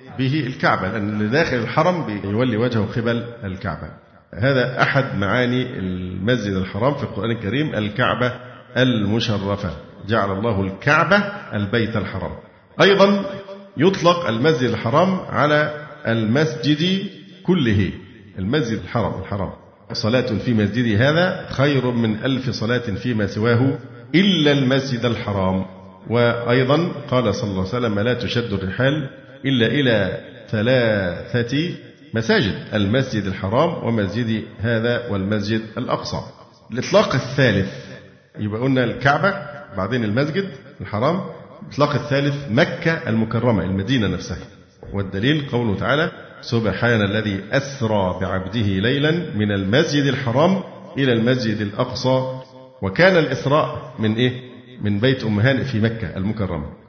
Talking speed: 110 wpm